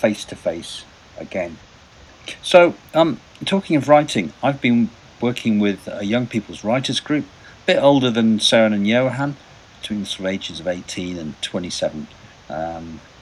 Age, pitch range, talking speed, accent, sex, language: 50-69, 105-140 Hz, 150 wpm, British, male, English